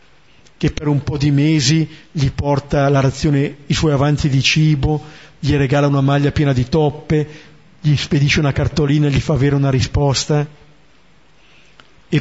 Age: 50-69